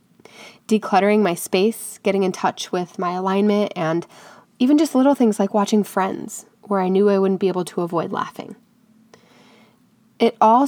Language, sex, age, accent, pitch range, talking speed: English, female, 20-39, American, 185-220 Hz, 165 wpm